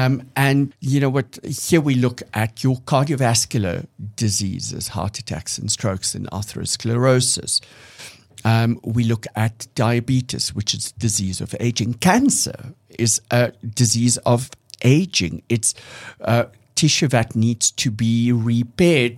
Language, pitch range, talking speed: English, 110-135 Hz, 135 wpm